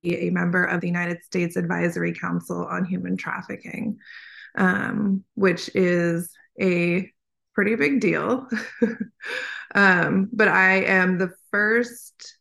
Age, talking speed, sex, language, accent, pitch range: 20-39, 115 wpm, female, English, American, 175-210 Hz